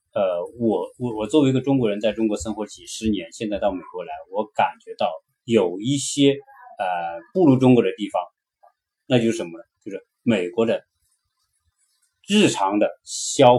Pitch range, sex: 110-145 Hz, male